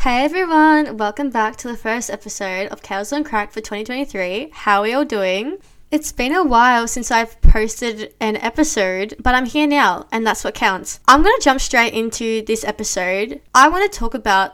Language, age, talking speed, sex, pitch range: English, 10-29, 200 wpm, female, 200-240 Hz